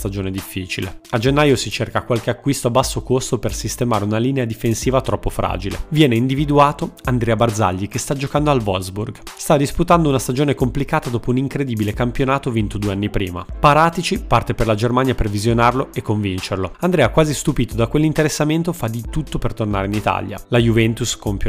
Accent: native